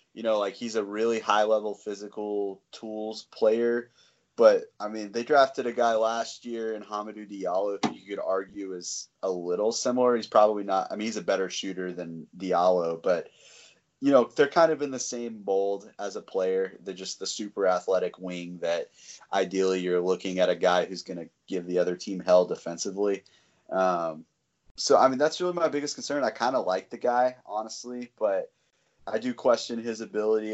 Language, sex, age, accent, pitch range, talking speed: English, male, 30-49, American, 90-115 Hz, 195 wpm